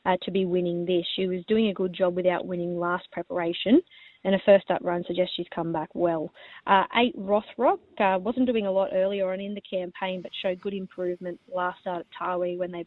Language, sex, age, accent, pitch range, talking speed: English, female, 20-39, Australian, 180-200 Hz, 225 wpm